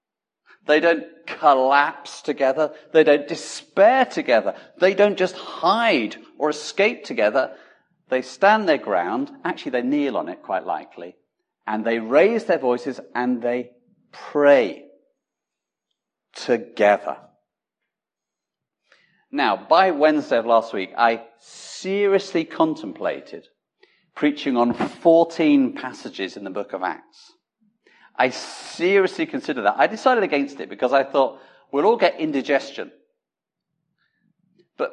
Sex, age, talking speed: male, 50-69, 120 wpm